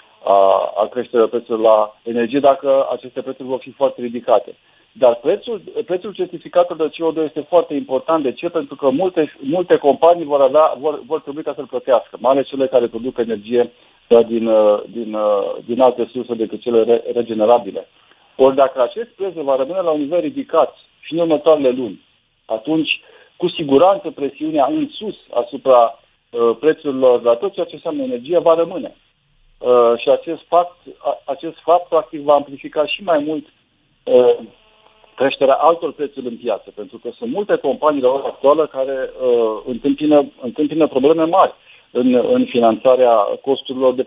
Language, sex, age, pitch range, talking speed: Romanian, male, 50-69, 125-190 Hz, 155 wpm